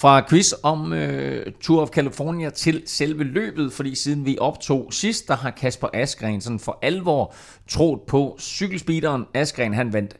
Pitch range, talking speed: 105-145 Hz, 160 wpm